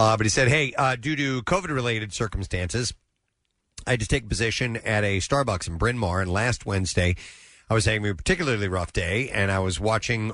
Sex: male